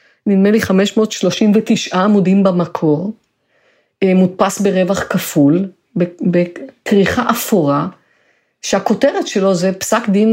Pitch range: 175-225 Hz